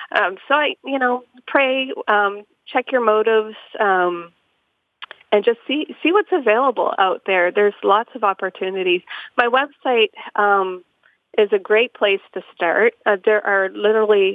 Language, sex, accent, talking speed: English, female, American, 150 wpm